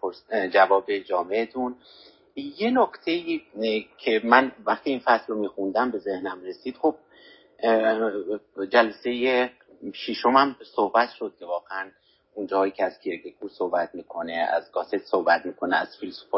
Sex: male